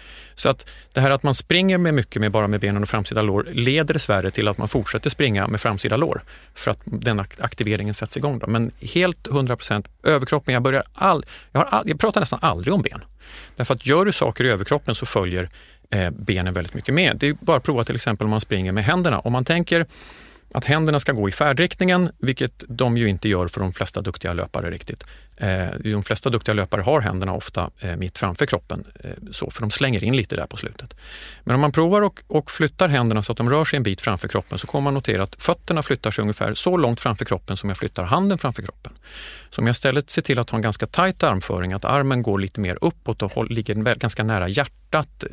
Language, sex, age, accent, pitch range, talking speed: English, male, 30-49, Swedish, 105-145 Hz, 230 wpm